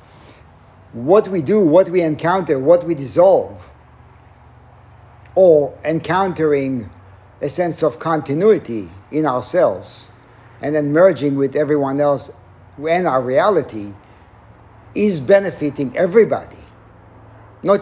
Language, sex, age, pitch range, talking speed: English, male, 50-69, 105-165 Hz, 100 wpm